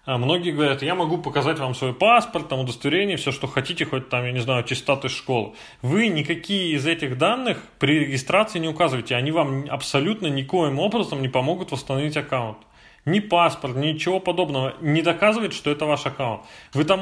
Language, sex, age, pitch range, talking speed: Russian, male, 20-39, 130-165 Hz, 180 wpm